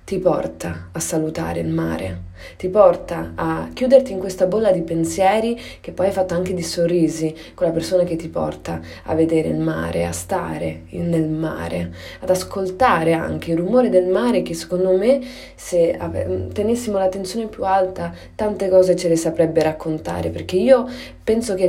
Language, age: Italian, 20-39